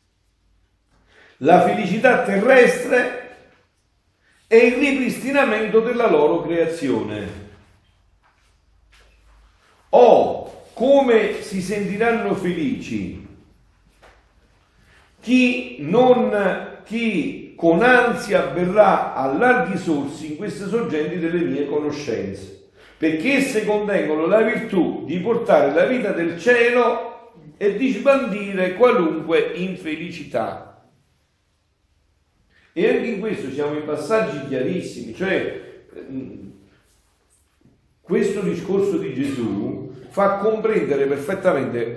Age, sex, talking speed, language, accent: 50-69, male, 85 wpm, Italian, native